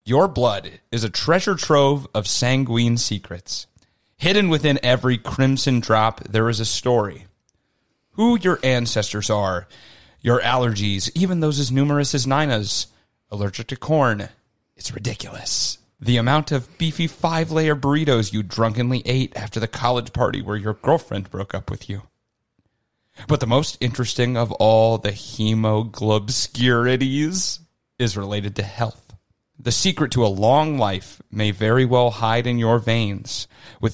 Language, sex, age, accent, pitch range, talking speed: English, male, 30-49, American, 110-135 Hz, 145 wpm